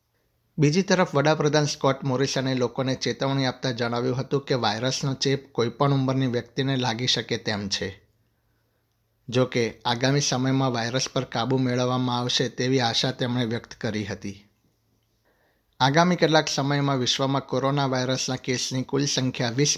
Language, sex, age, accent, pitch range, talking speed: Gujarati, male, 60-79, native, 115-135 Hz, 135 wpm